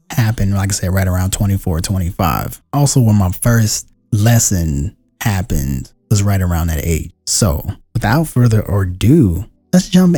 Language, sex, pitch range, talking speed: English, male, 95-120 Hz, 145 wpm